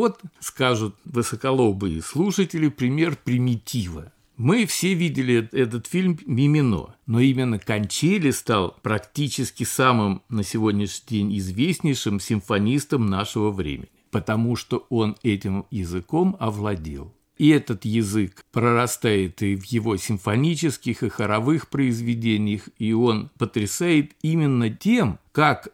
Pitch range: 110-155 Hz